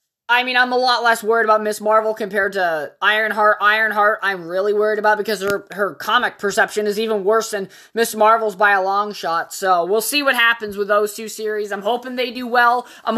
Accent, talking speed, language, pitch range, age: American, 220 wpm, English, 210-255 Hz, 20-39